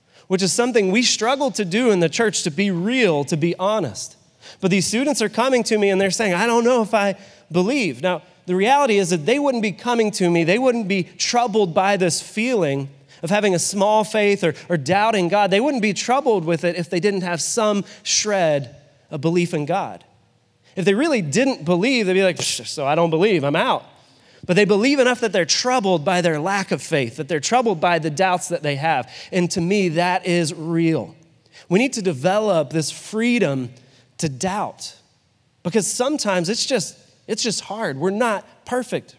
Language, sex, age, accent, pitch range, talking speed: English, male, 30-49, American, 165-220 Hz, 205 wpm